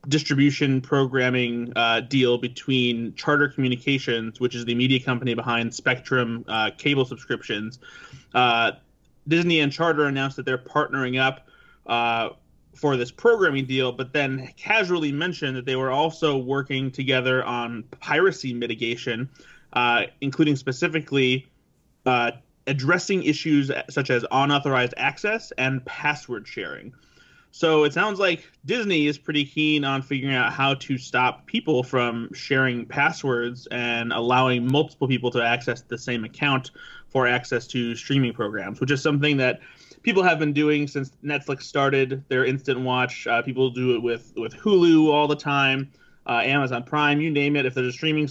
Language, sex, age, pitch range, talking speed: English, male, 30-49, 125-150 Hz, 155 wpm